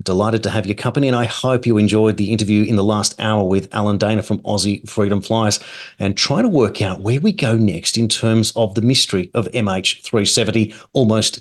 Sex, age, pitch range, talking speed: male, 40-59, 105-140 Hz, 210 wpm